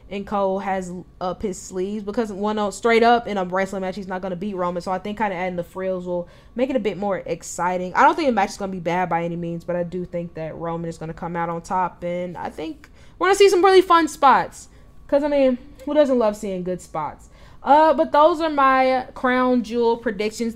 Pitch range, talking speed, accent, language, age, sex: 190-245 Hz, 260 wpm, American, English, 10-29, female